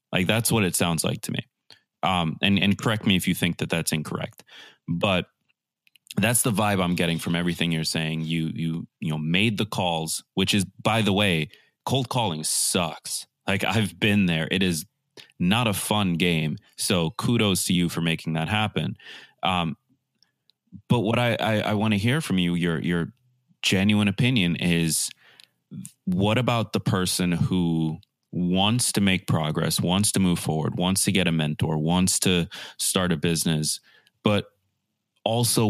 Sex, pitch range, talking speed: male, 85-105 Hz, 175 wpm